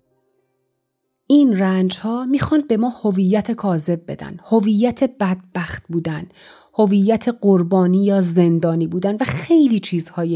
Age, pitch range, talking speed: 30-49, 180-240 Hz, 115 wpm